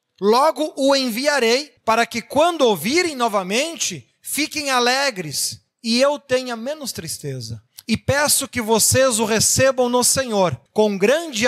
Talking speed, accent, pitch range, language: 130 wpm, Brazilian, 180-250 Hz, Portuguese